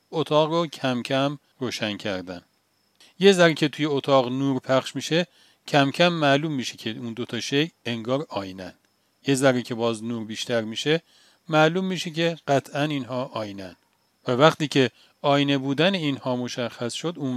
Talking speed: 160 wpm